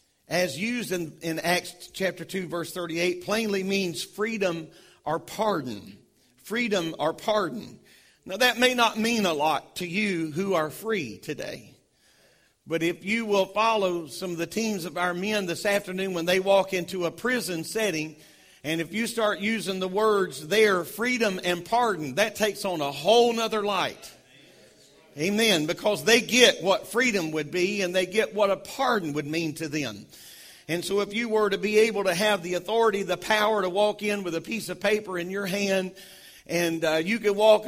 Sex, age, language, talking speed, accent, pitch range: male, 40-59, English, 185 wpm, American, 175-215 Hz